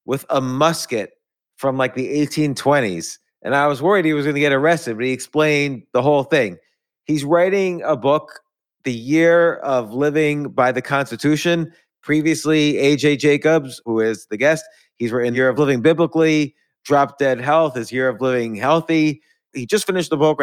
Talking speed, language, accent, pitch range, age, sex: 175 wpm, English, American, 130-160 Hz, 30-49, male